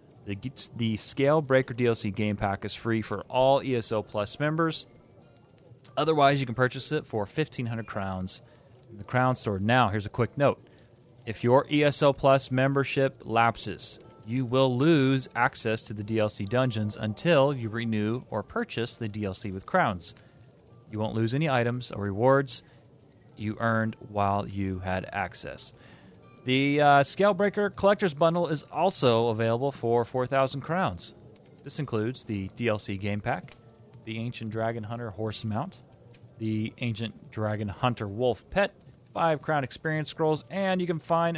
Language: English